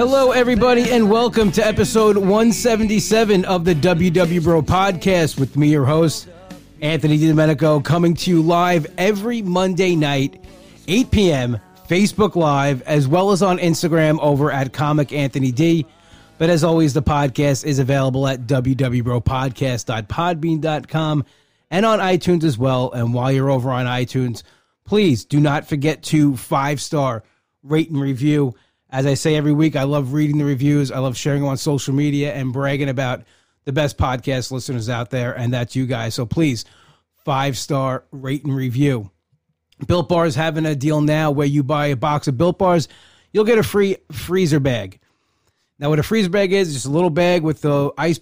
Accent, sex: American, male